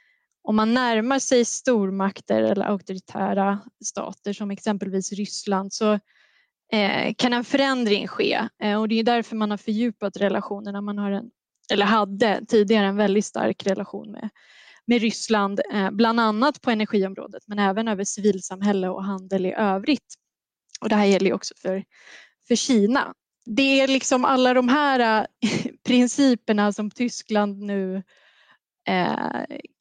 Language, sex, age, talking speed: Swedish, female, 20-39, 130 wpm